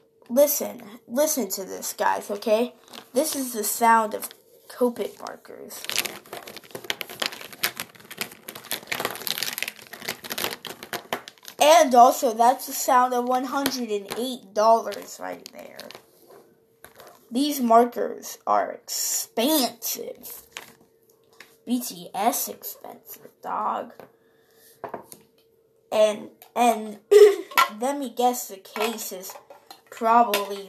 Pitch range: 205-305 Hz